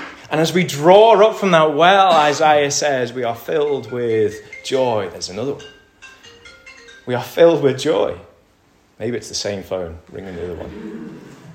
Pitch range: 120-170 Hz